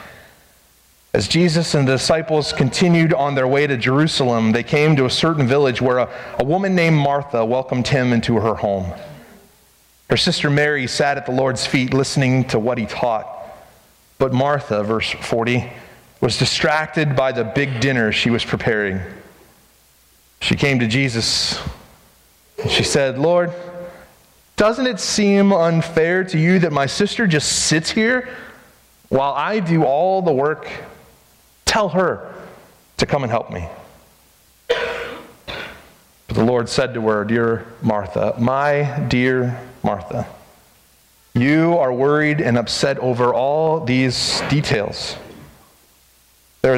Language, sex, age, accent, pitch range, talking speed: English, male, 30-49, American, 110-150 Hz, 140 wpm